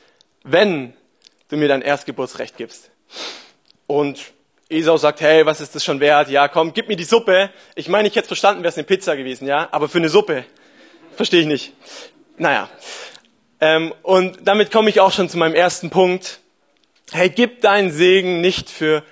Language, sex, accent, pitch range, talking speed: German, male, German, 155-195 Hz, 180 wpm